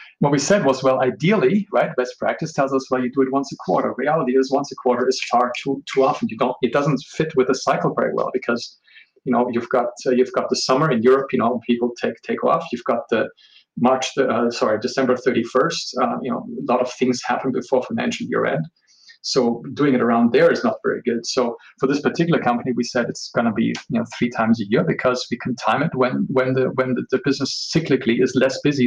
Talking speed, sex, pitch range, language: 245 wpm, male, 120-140 Hz, English